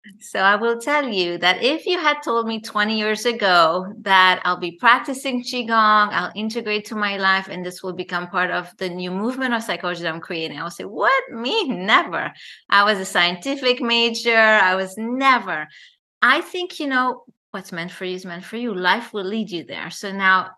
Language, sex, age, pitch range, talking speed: English, female, 30-49, 180-235 Hz, 205 wpm